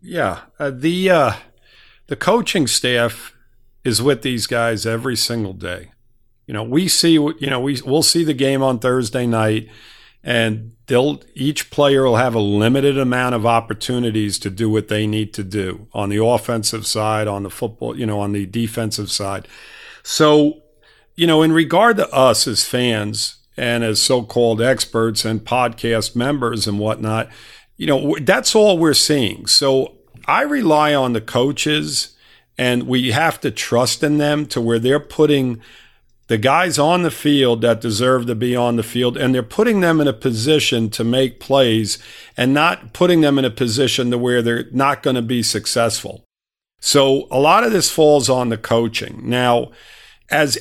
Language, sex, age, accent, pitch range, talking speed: English, male, 50-69, American, 115-140 Hz, 175 wpm